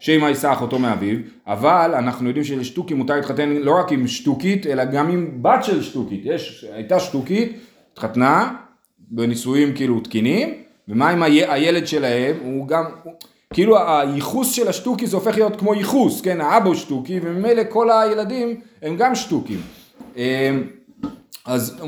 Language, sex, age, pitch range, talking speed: Hebrew, male, 30-49, 145-225 Hz, 150 wpm